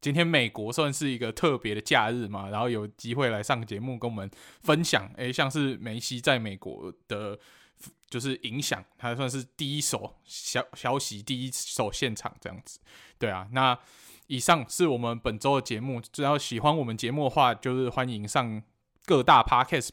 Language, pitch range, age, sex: Chinese, 110-140 Hz, 20-39, male